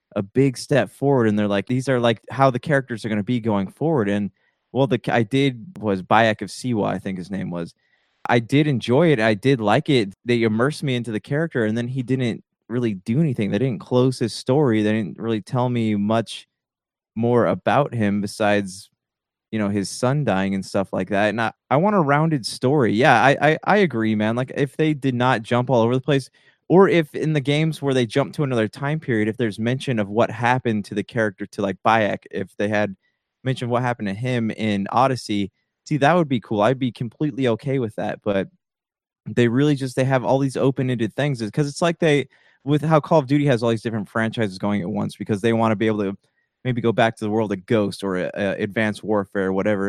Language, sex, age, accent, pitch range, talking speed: English, male, 20-39, American, 105-135 Hz, 230 wpm